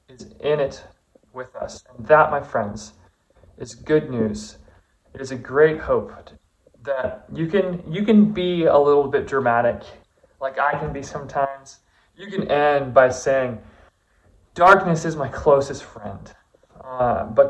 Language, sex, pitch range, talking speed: English, male, 110-145 Hz, 145 wpm